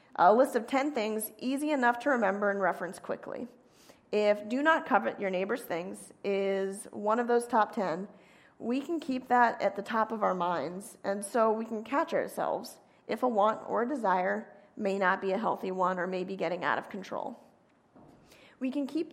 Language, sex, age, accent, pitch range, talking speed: English, female, 40-59, American, 195-245 Hz, 200 wpm